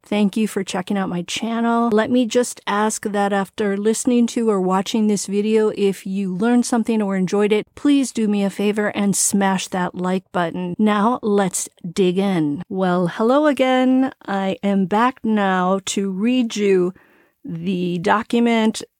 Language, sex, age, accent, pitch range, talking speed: English, female, 40-59, American, 180-215 Hz, 165 wpm